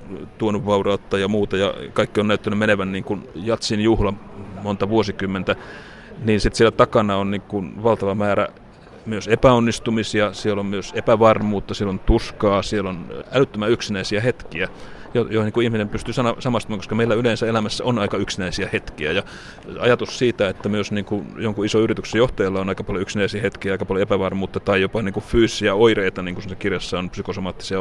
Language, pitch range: Finnish, 100-110 Hz